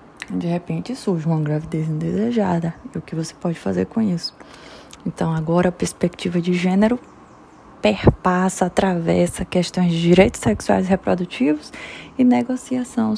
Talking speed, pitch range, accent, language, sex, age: 135 wpm, 165-200 Hz, Brazilian, Portuguese, female, 20-39